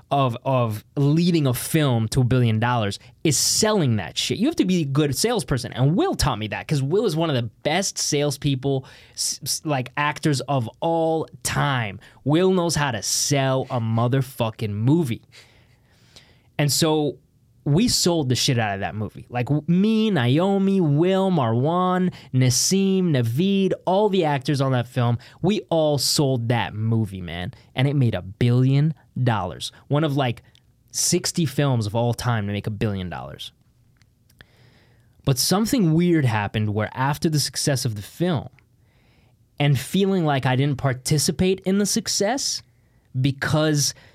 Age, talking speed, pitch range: 20-39, 160 wpm, 120-155 Hz